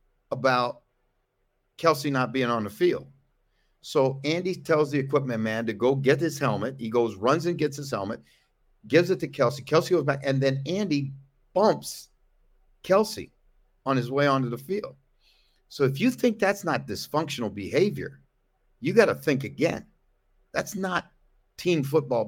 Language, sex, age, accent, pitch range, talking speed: English, male, 50-69, American, 110-160 Hz, 160 wpm